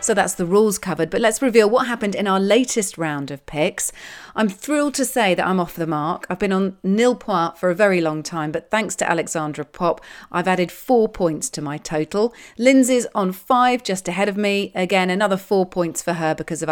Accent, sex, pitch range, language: British, female, 160-210 Hz, English